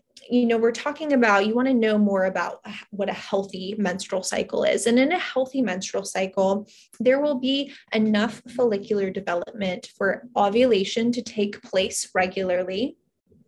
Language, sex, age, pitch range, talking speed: English, female, 20-39, 190-220 Hz, 155 wpm